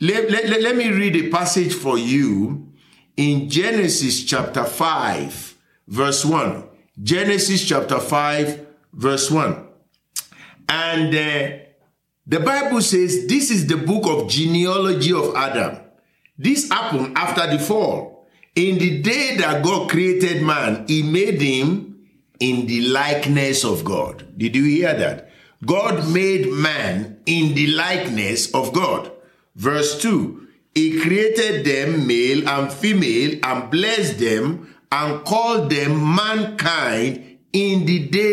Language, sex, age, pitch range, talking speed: English, male, 50-69, 140-195 Hz, 130 wpm